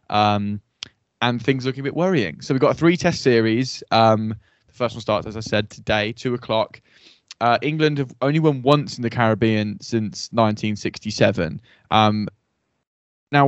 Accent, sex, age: British, male, 10-29